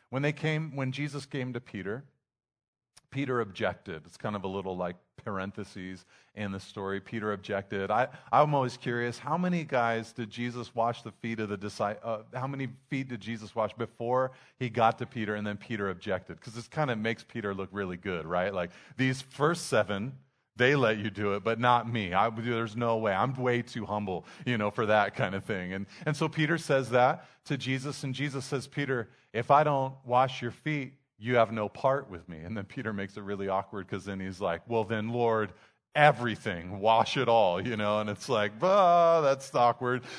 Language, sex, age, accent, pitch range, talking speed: English, male, 40-59, American, 105-135 Hz, 210 wpm